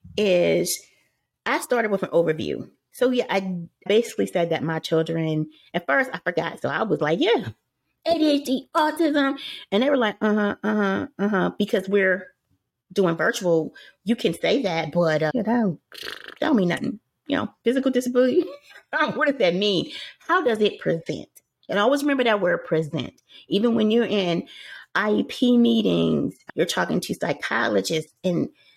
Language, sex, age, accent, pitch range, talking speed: English, female, 30-49, American, 160-225 Hz, 165 wpm